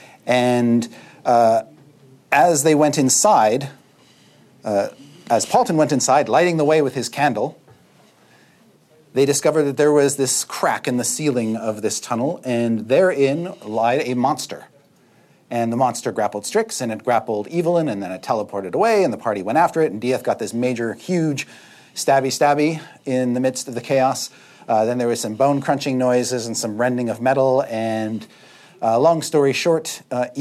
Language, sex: English, male